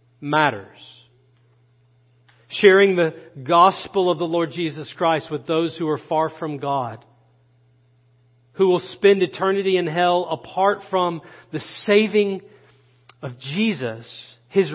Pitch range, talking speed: 130-190 Hz, 120 wpm